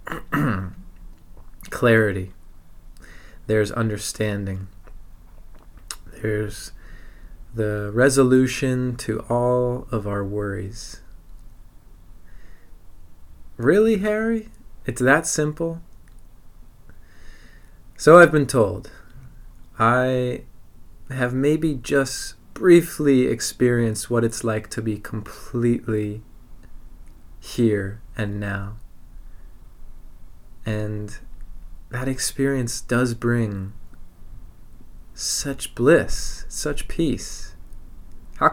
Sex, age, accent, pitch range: male, 20-39, American, 90-125 Hz